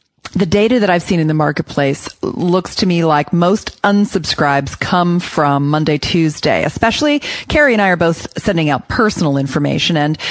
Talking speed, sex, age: 170 wpm, female, 40-59